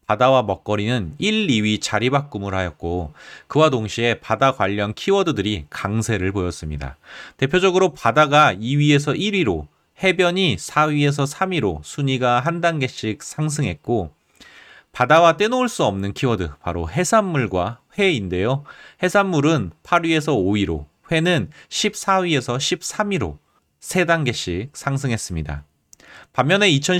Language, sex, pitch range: Korean, male, 100-170 Hz